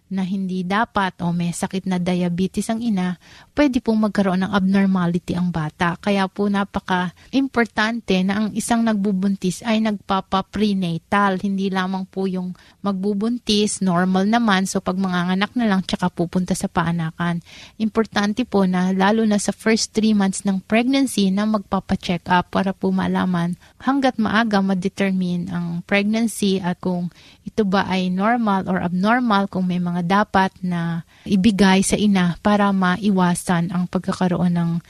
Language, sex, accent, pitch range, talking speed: Filipino, female, native, 180-210 Hz, 150 wpm